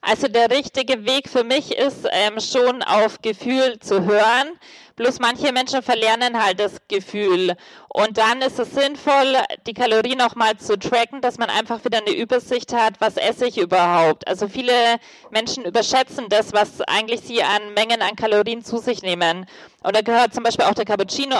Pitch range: 215-255 Hz